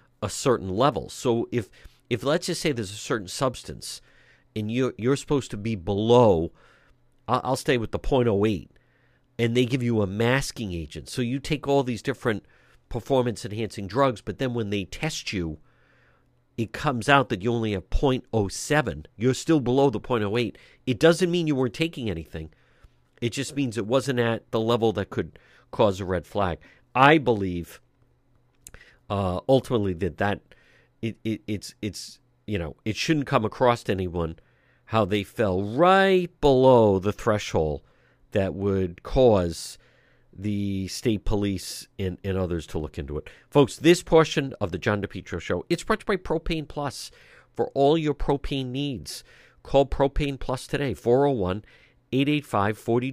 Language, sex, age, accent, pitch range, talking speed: English, male, 50-69, American, 100-140 Hz, 170 wpm